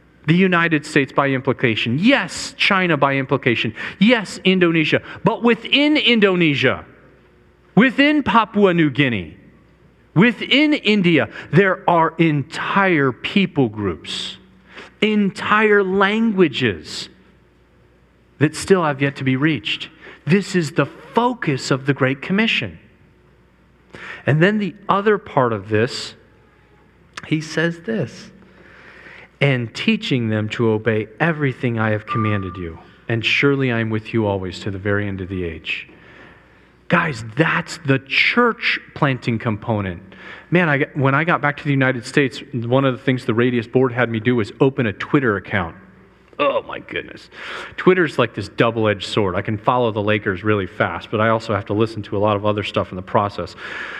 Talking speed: 150 wpm